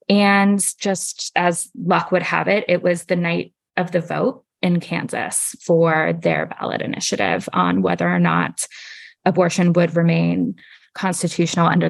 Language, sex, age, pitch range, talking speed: English, female, 20-39, 165-185 Hz, 145 wpm